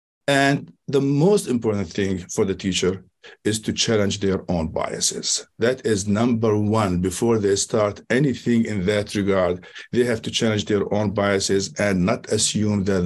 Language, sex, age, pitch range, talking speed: English, male, 50-69, 100-120 Hz, 165 wpm